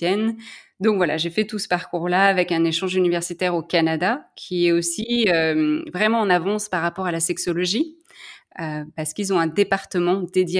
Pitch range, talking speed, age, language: 175-220 Hz, 180 wpm, 20-39, French